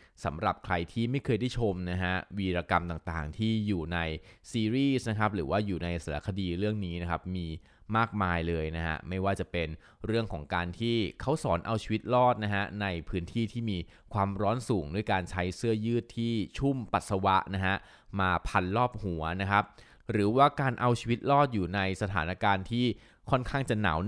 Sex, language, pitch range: male, Thai, 90-115 Hz